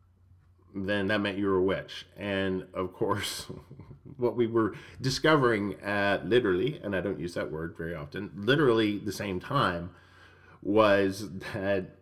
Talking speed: 150 wpm